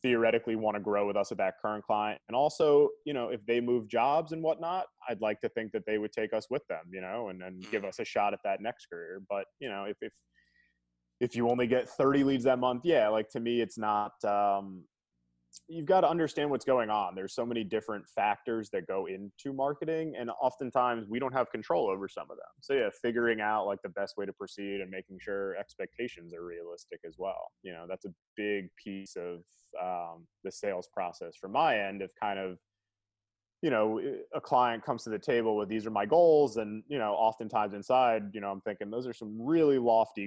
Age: 20-39